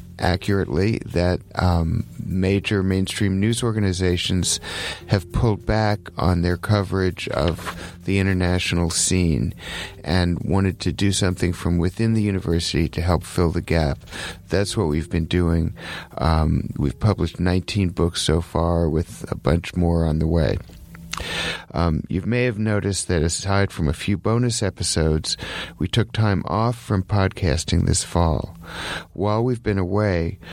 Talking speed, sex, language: 145 wpm, male, English